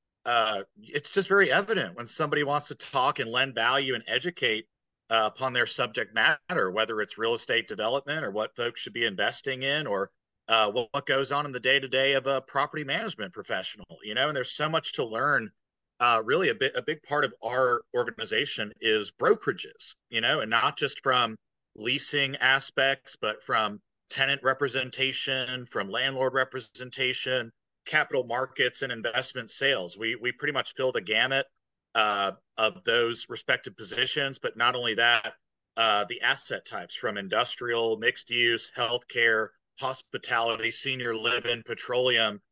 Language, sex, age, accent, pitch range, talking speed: English, male, 40-59, American, 115-140 Hz, 165 wpm